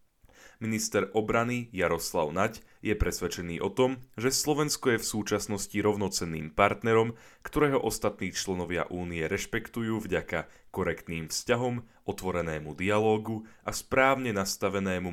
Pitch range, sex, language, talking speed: 85-110 Hz, male, Slovak, 110 wpm